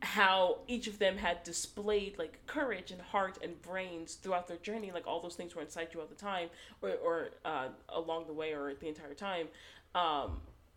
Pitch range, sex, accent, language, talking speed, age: 160-205 Hz, female, American, English, 200 wpm, 20-39